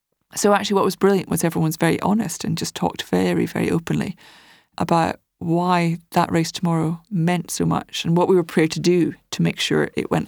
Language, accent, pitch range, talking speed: English, British, 170-205 Hz, 205 wpm